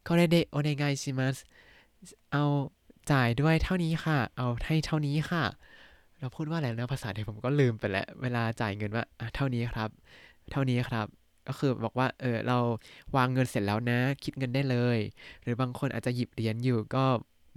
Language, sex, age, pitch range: Thai, male, 20-39, 120-155 Hz